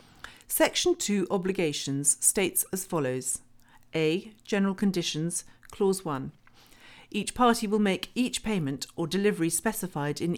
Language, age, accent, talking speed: English, 50-69, British, 120 wpm